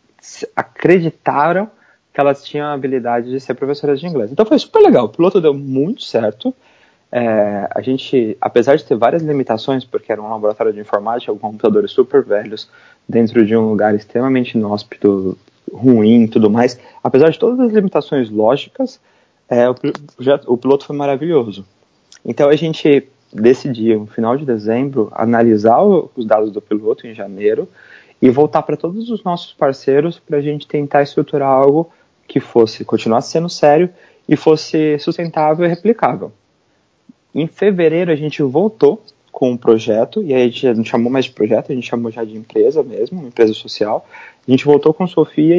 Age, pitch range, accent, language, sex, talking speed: 20-39, 115-160 Hz, Brazilian, Portuguese, male, 170 wpm